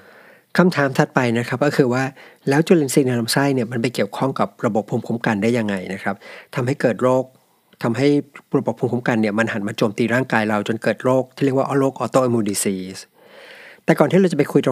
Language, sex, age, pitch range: Thai, male, 60-79, 115-140 Hz